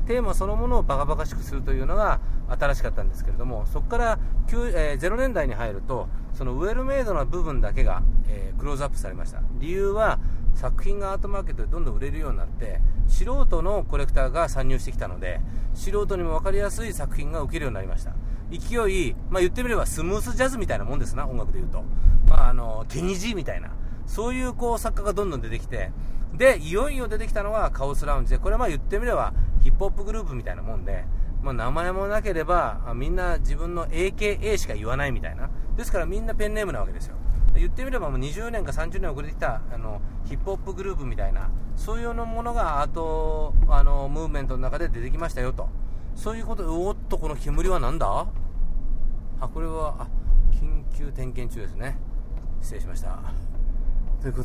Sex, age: male, 40-59